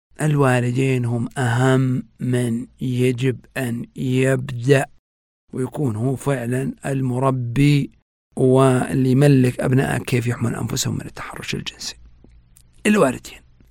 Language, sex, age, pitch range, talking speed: Arabic, male, 50-69, 130-170 Hz, 90 wpm